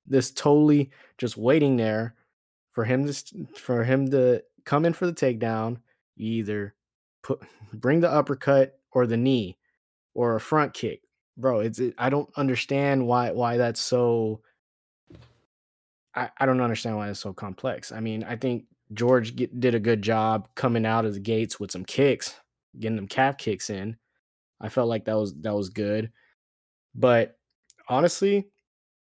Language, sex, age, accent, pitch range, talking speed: English, male, 20-39, American, 105-130 Hz, 160 wpm